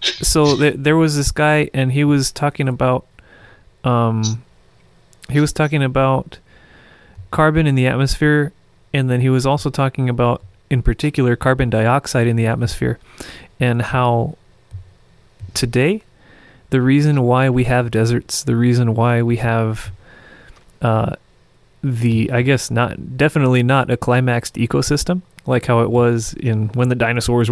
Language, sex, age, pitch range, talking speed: English, male, 30-49, 115-130 Hz, 140 wpm